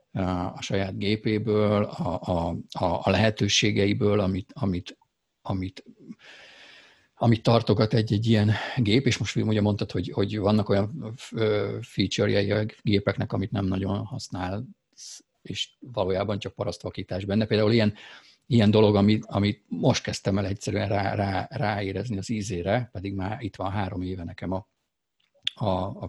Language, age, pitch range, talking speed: Hungarian, 50-69, 95-115 Hz, 135 wpm